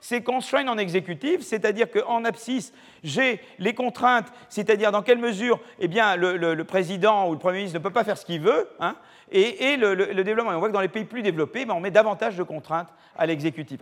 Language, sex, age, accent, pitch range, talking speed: French, male, 40-59, French, 170-240 Hz, 240 wpm